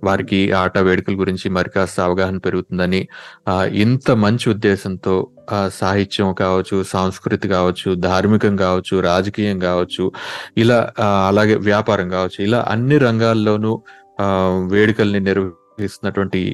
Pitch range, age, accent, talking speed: 95-105 Hz, 30-49, native, 110 wpm